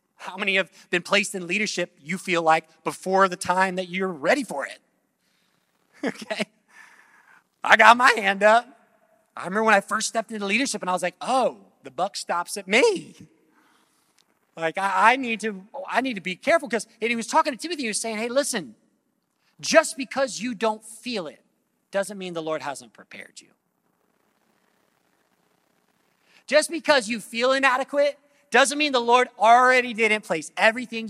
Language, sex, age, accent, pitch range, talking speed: English, male, 30-49, American, 190-290 Hz, 170 wpm